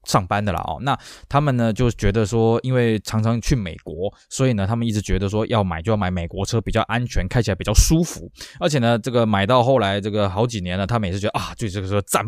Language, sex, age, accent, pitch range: Chinese, male, 20-39, native, 100-140 Hz